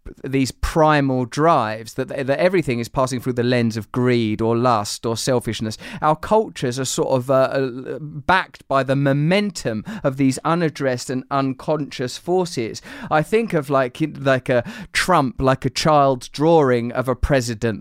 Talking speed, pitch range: 160 wpm, 125-150 Hz